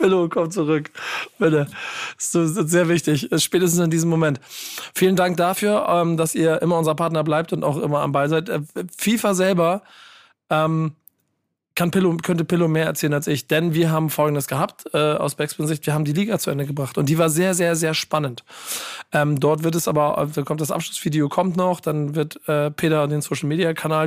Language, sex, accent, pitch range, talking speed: German, male, German, 150-170 Hz, 190 wpm